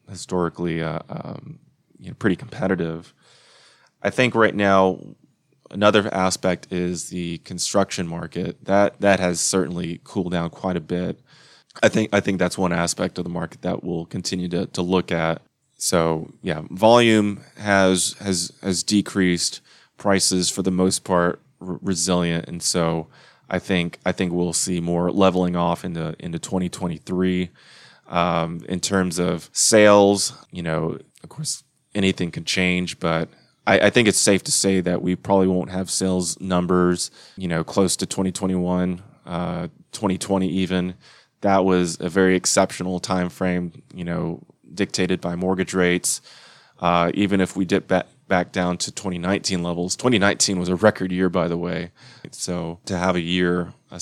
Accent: American